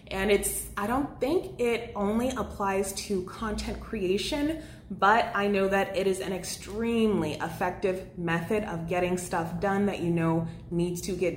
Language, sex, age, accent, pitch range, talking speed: English, female, 20-39, American, 180-225 Hz, 165 wpm